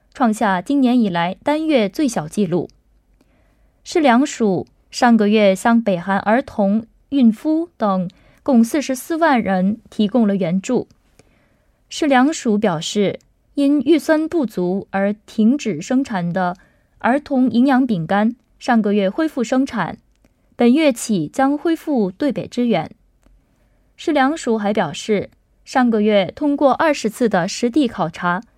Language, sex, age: Korean, female, 20-39